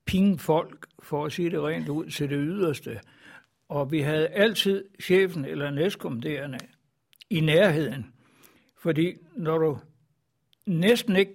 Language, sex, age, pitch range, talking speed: Danish, male, 60-79, 140-180 Hz, 130 wpm